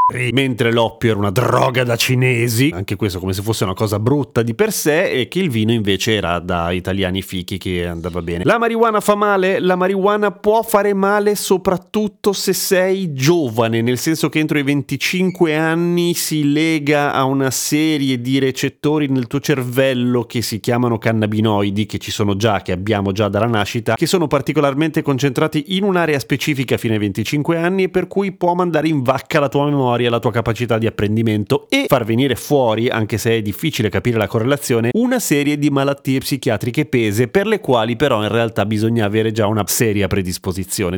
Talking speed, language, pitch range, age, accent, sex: 185 wpm, Italian, 110-160 Hz, 30-49, native, male